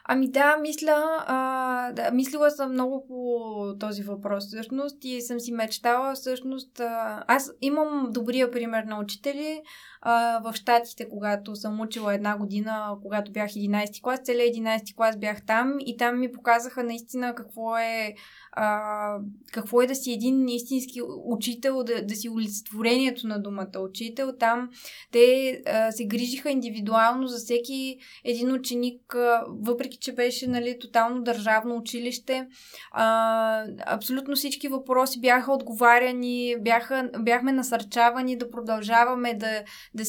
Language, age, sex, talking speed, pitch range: Bulgarian, 20-39, female, 140 wpm, 220-255 Hz